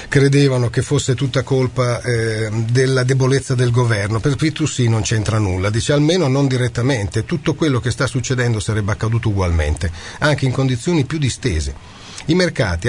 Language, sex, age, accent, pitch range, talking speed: Italian, male, 40-59, native, 105-130 Hz, 155 wpm